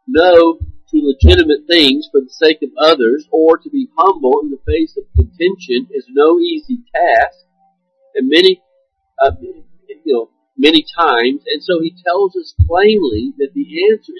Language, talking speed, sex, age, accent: English, 160 wpm, male, 50-69, American